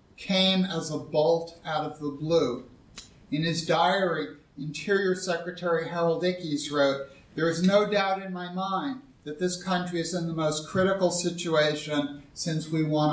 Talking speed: 160 wpm